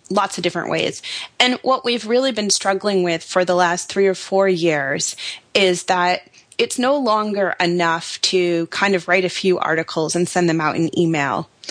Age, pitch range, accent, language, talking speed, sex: 20-39, 175-205 Hz, American, English, 190 wpm, female